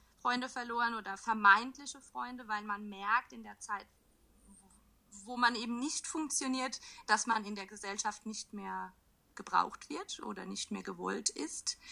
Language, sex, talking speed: English, female, 150 wpm